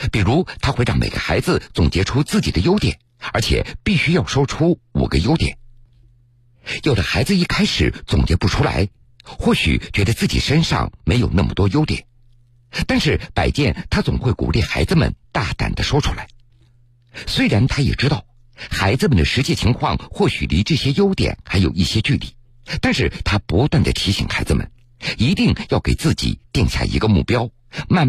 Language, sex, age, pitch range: Chinese, male, 50-69, 105-125 Hz